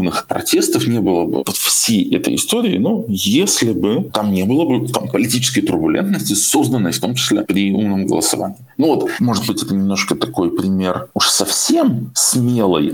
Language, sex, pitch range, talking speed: Russian, male, 100-135 Hz, 170 wpm